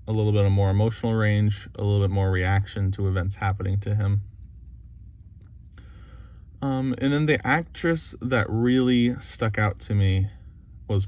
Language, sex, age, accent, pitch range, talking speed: English, male, 20-39, American, 95-110 Hz, 155 wpm